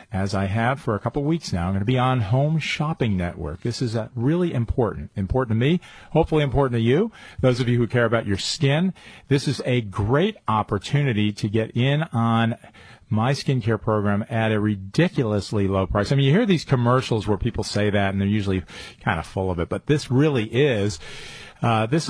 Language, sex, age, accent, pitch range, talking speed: English, male, 40-59, American, 100-130 Hz, 210 wpm